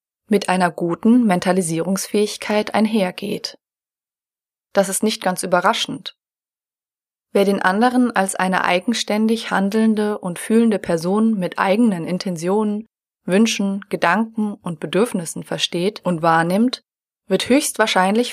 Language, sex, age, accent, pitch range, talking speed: German, female, 20-39, German, 180-220 Hz, 105 wpm